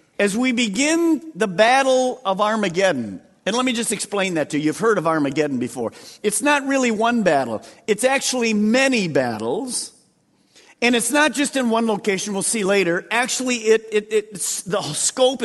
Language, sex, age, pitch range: English, male, 50-69, 185-245 Hz